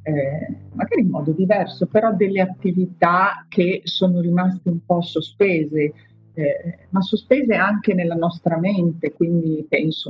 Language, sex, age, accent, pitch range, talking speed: Italian, female, 50-69, native, 160-200 Hz, 135 wpm